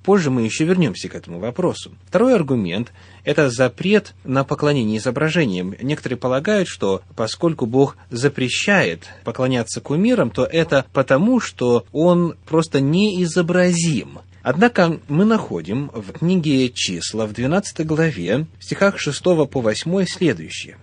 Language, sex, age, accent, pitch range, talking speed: Russian, male, 30-49, native, 110-175 Hz, 130 wpm